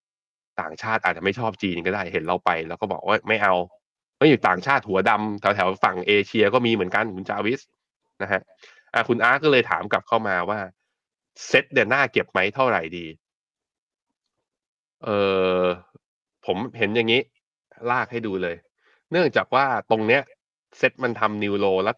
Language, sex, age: Thai, male, 20-39